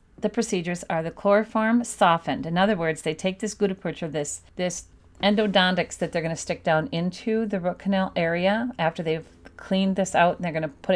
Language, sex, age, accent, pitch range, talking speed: English, female, 40-59, American, 165-195 Hz, 210 wpm